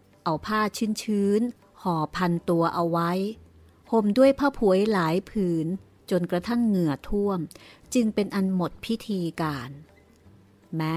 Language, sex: Thai, female